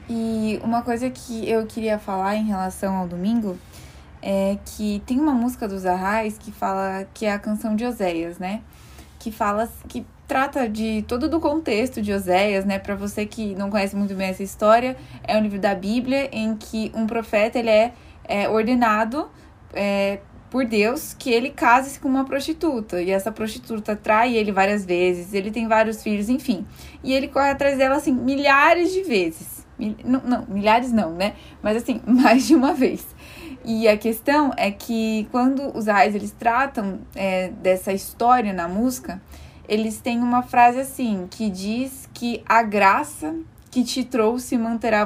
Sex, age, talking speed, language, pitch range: female, 10-29, 170 wpm, Portuguese, 205-250 Hz